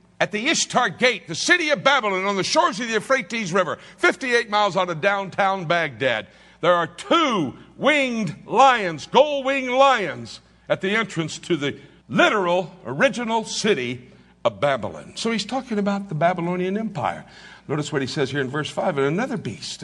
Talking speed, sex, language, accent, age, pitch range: 170 wpm, male, English, American, 60-79, 140-210 Hz